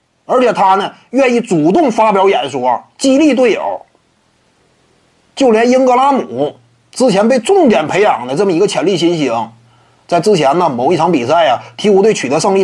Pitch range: 190-290 Hz